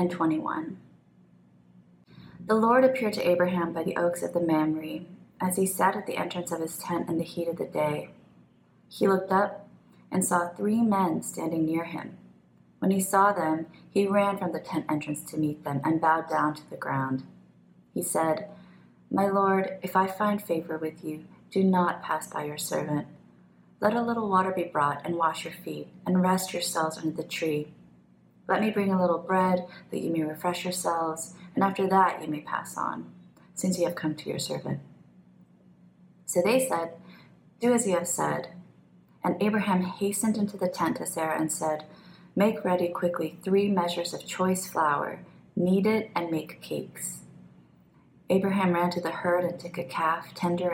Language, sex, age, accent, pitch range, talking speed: English, female, 30-49, American, 155-185 Hz, 180 wpm